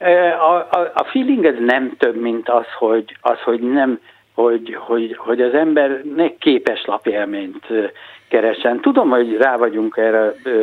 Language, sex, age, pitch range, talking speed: Hungarian, male, 60-79, 115-130 Hz, 145 wpm